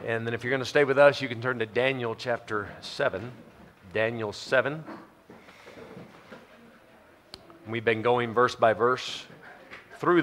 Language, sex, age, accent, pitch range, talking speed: English, male, 40-59, American, 110-130 Hz, 145 wpm